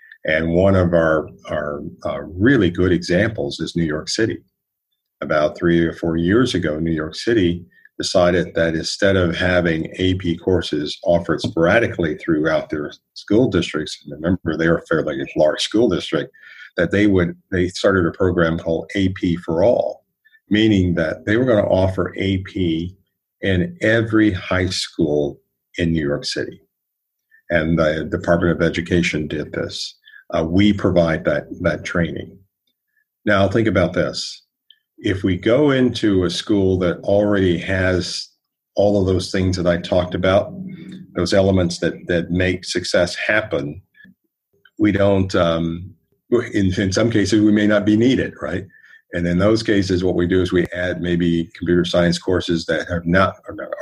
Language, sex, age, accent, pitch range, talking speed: English, male, 50-69, American, 85-100 Hz, 160 wpm